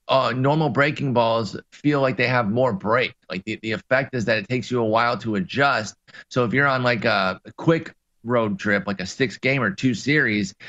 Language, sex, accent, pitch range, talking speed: English, male, American, 110-130 Hz, 225 wpm